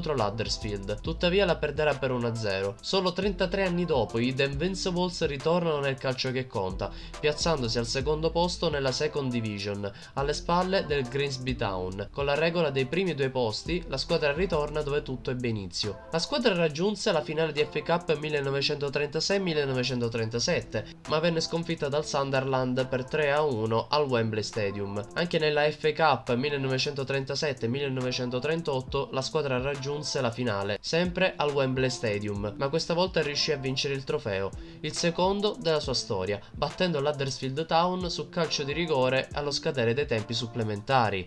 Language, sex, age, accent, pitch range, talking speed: Italian, male, 20-39, native, 120-160 Hz, 145 wpm